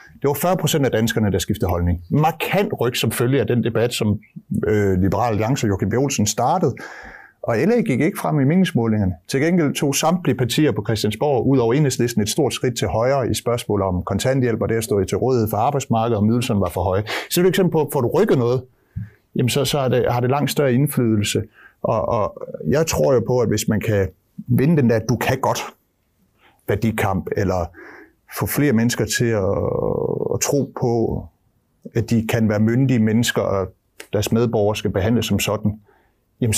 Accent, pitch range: native, 105-130 Hz